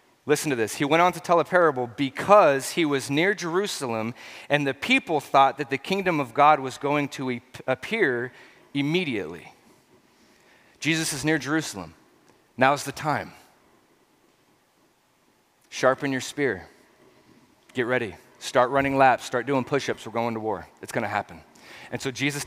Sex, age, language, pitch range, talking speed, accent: male, 30-49, English, 130-160 Hz, 160 wpm, American